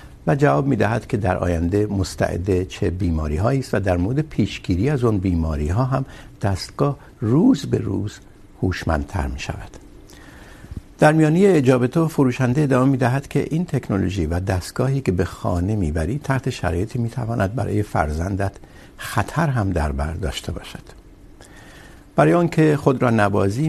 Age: 60-79